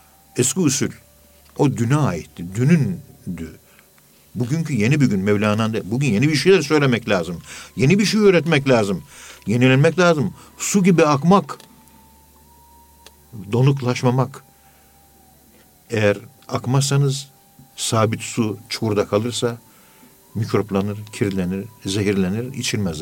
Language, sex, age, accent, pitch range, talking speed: Turkish, male, 60-79, native, 95-135 Hz, 100 wpm